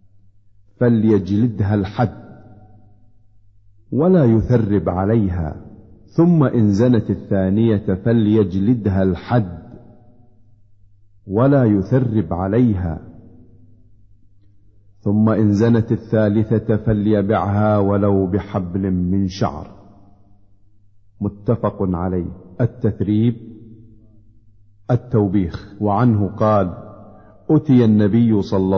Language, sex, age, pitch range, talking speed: Arabic, male, 50-69, 95-110 Hz, 65 wpm